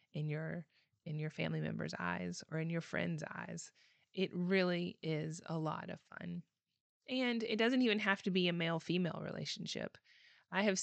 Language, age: English, 20-39